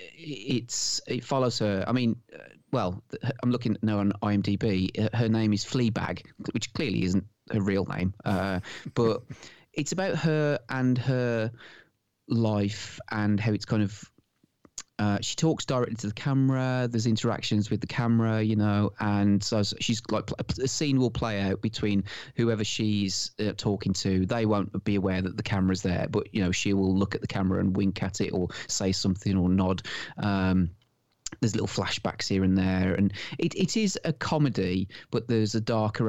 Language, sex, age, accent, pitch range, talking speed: English, male, 30-49, British, 95-115 Hz, 175 wpm